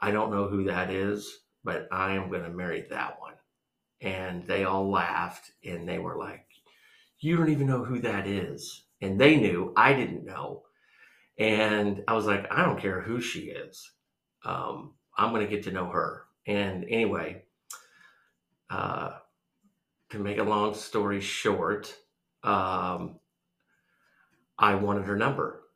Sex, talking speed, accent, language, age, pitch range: male, 150 wpm, American, English, 40-59, 95-105 Hz